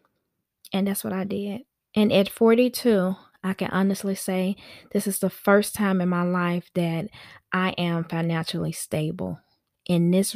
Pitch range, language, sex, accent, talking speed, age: 180-215 Hz, English, female, American, 155 wpm, 20-39